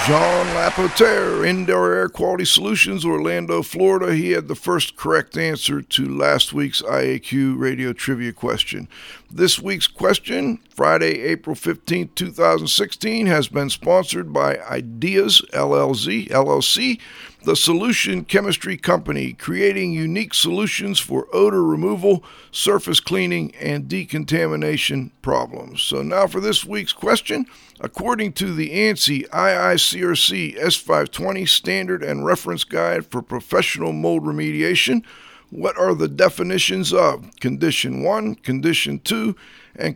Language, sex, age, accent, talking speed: English, male, 50-69, American, 120 wpm